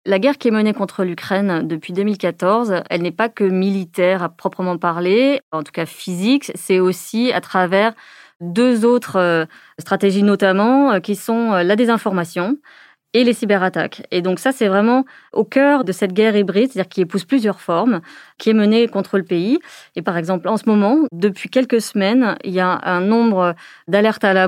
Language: French